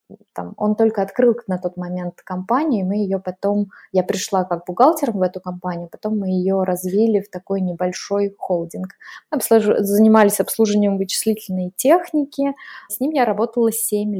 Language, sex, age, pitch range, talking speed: Russian, female, 20-39, 185-220 Hz, 150 wpm